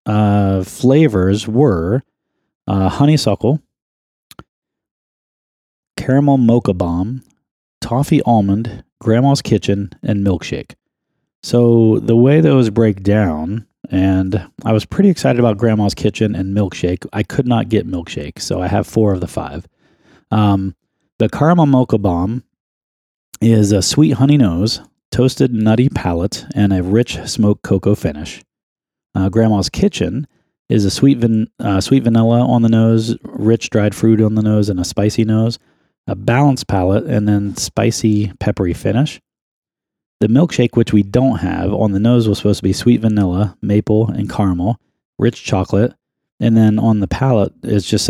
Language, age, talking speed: English, 30-49, 145 wpm